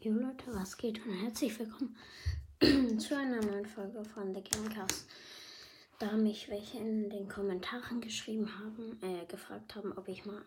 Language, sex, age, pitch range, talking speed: German, female, 20-39, 195-220 Hz, 160 wpm